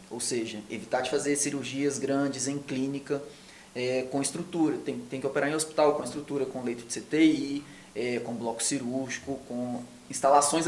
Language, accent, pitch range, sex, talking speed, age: Portuguese, Brazilian, 130-145 Hz, male, 170 wpm, 20-39